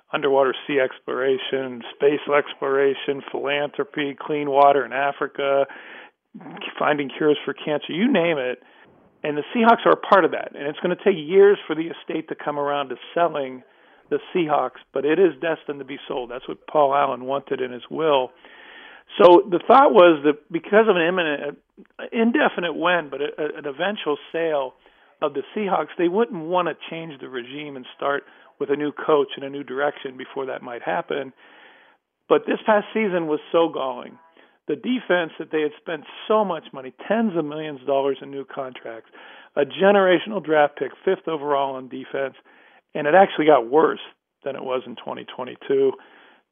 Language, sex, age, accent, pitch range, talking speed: English, male, 50-69, American, 140-185 Hz, 180 wpm